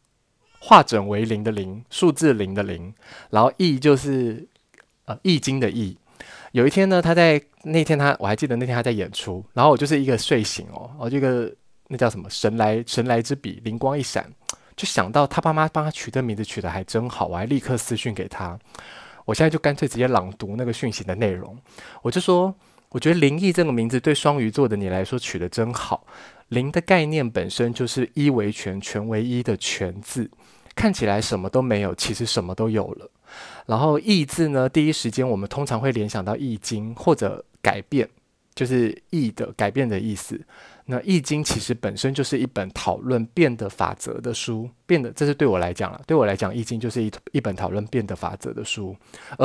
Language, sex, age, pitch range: Chinese, male, 20-39, 105-140 Hz